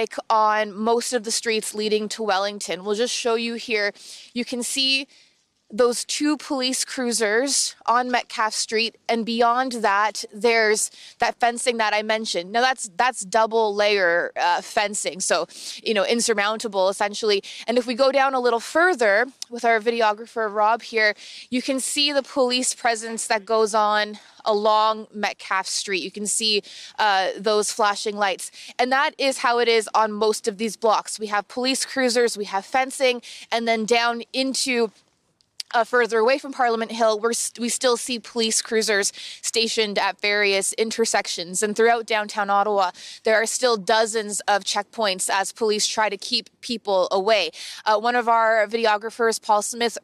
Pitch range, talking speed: 210-240 Hz, 165 wpm